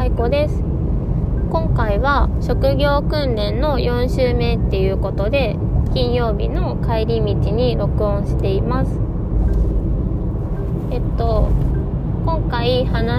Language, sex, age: Japanese, female, 20-39